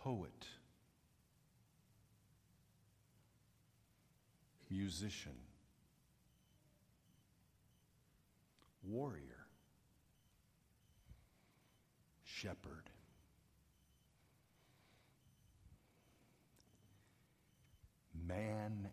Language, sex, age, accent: English, male, 60-79, American